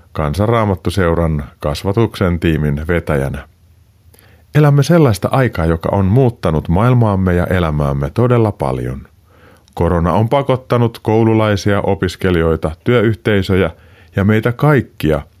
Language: Finnish